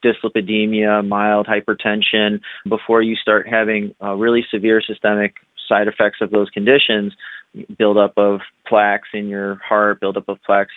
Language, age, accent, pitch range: English, 30-49, American, 105-120 Hz